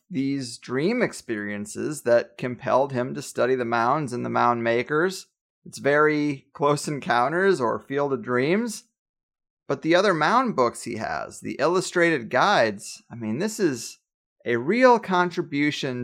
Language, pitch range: English, 125-180 Hz